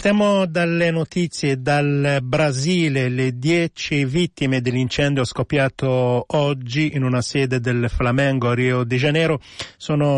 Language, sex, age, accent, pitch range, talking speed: Italian, male, 40-59, native, 125-145 Hz, 125 wpm